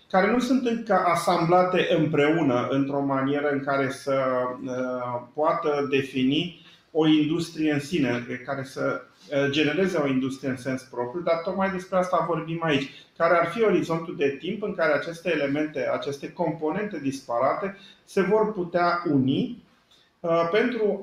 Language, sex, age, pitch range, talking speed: Romanian, male, 40-59, 140-175 Hz, 140 wpm